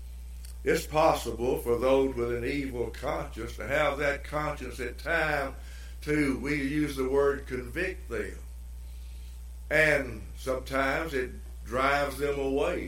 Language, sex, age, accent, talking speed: English, male, 60-79, American, 125 wpm